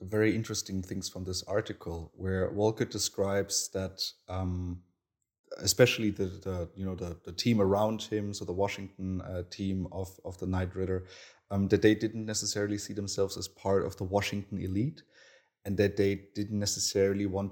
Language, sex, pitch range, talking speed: English, male, 95-110 Hz, 170 wpm